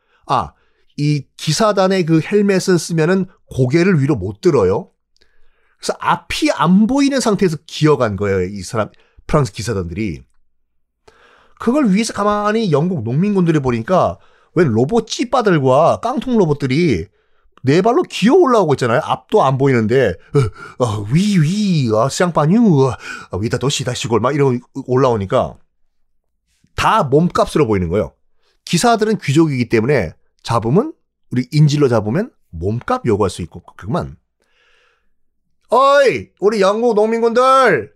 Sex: male